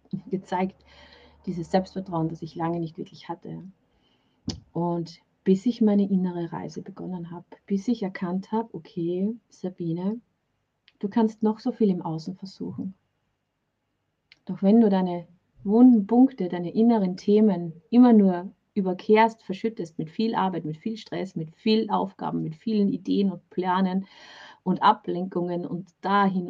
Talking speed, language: 140 wpm, German